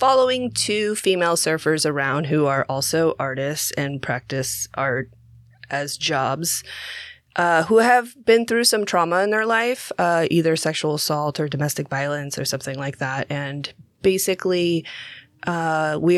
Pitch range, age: 140-175 Hz, 20-39